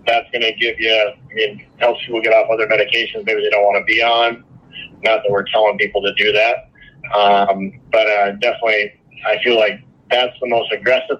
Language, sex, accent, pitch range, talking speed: English, male, American, 100-120 Hz, 210 wpm